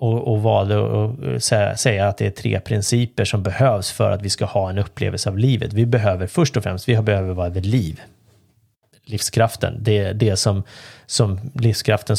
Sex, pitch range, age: male, 105-125 Hz, 30-49